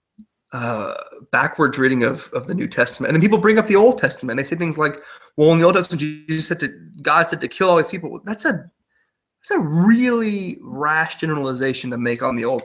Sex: male